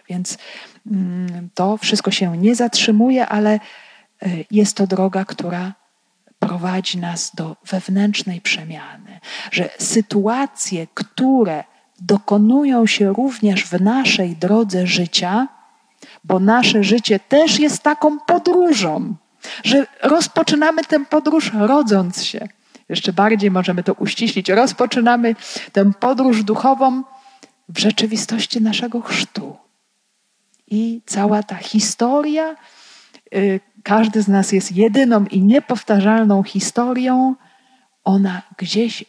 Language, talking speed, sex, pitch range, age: Polish, 105 wpm, female, 195-245 Hz, 40-59